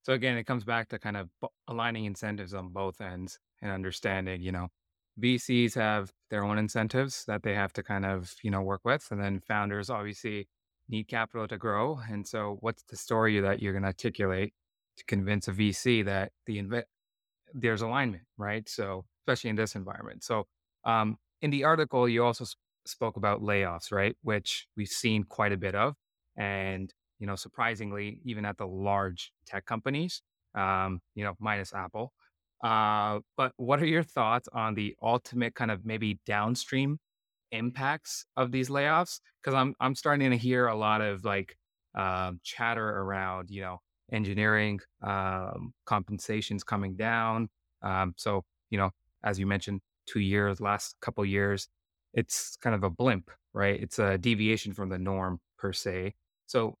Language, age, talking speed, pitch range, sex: English, 20-39, 170 wpm, 95-115 Hz, male